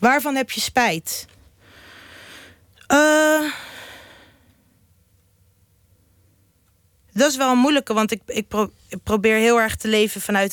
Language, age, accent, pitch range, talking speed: Dutch, 30-49, Dutch, 165-225 Hz, 120 wpm